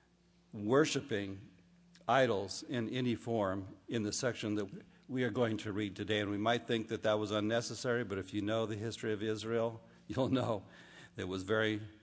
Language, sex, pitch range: English, male, 105-135 Hz